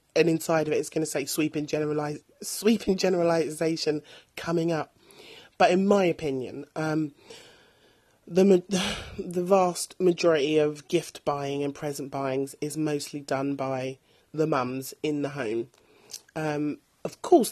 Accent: British